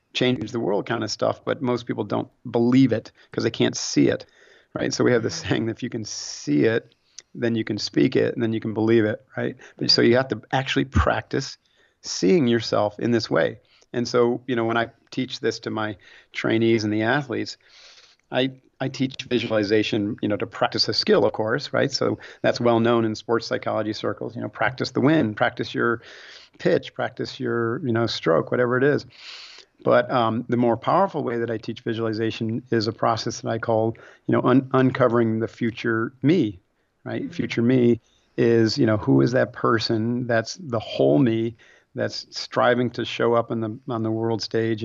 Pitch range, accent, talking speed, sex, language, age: 115-125 Hz, American, 200 wpm, male, English, 40-59